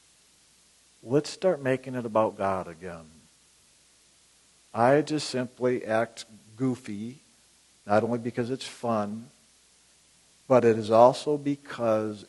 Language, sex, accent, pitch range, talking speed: English, male, American, 105-135 Hz, 105 wpm